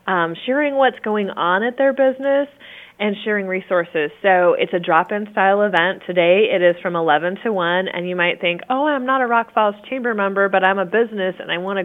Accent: American